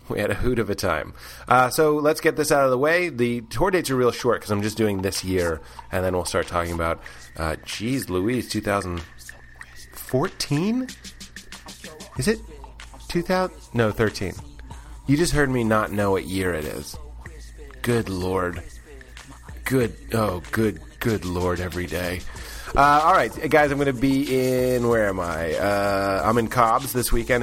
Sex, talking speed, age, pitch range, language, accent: male, 175 wpm, 30-49, 100-135 Hz, English, American